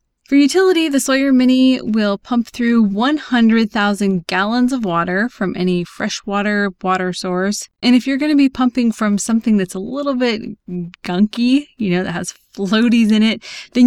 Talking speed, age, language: 175 wpm, 20-39, English